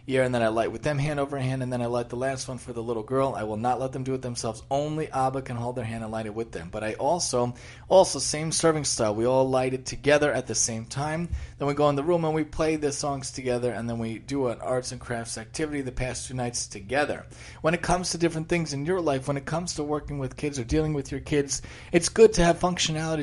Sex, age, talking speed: male, 30-49, 280 wpm